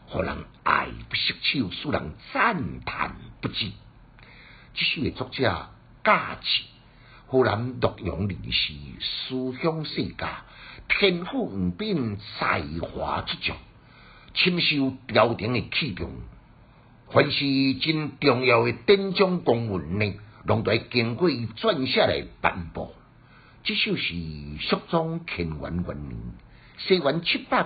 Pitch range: 90-140 Hz